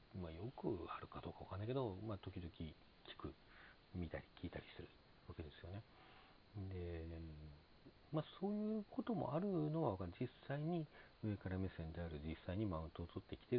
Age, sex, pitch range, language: 40-59, male, 80-110 Hz, Japanese